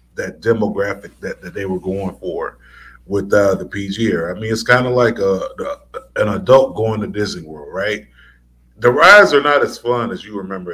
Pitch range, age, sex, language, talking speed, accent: 90-120 Hz, 30-49, male, English, 200 wpm, American